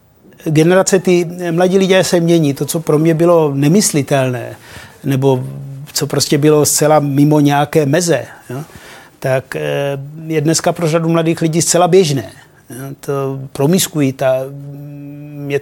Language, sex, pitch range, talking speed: Czech, male, 145-165 Hz, 125 wpm